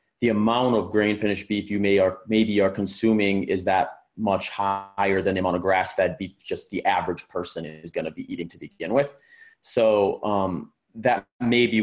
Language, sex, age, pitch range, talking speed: English, male, 30-49, 90-110 Hz, 195 wpm